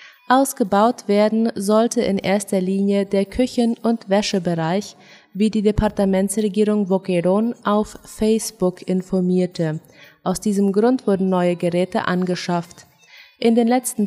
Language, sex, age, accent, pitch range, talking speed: German, female, 20-39, German, 185-220 Hz, 115 wpm